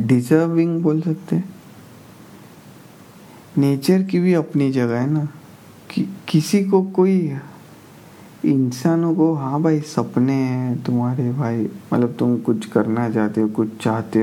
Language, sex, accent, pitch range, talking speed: Hindi, male, native, 120-150 Hz, 125 wpm